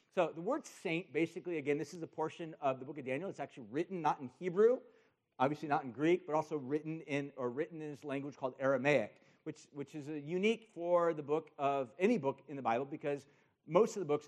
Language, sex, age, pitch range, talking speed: English, male, 50-69, 140-190 Hz, 230 wpm